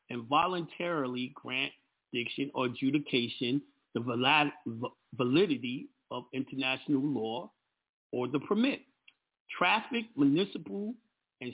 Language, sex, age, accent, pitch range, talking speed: English, male, 50-69, American, 130-185 Hz, 90 wpm